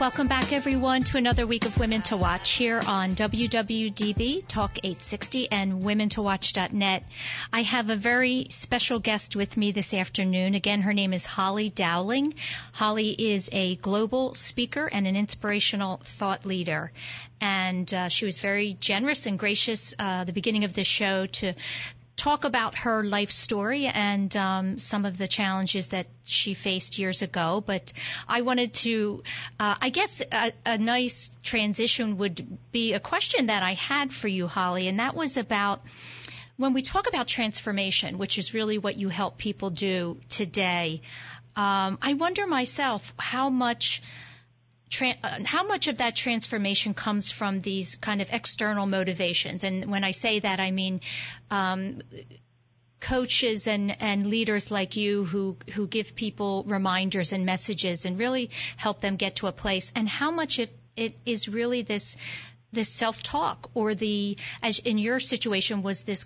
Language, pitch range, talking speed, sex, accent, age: English, 190-230 Hz, 160 wpm, female, American, 40-59